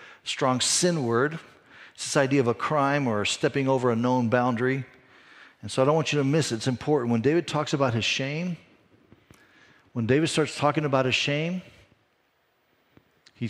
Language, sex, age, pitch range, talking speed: English, male, 50-69, 110-135 Hz, 180 wpm